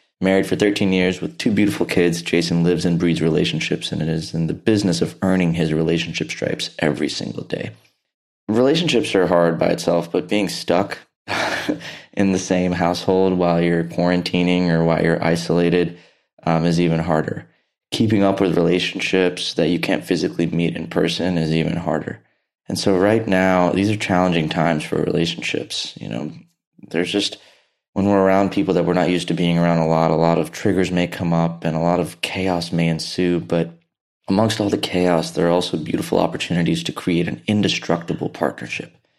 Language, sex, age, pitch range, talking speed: English, male, 20-39, 85-90 Hz, 180 wpm